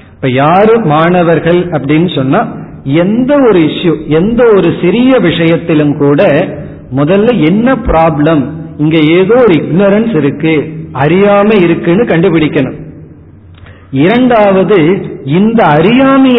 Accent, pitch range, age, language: native, 150-185 Hz, 40-59, Tamil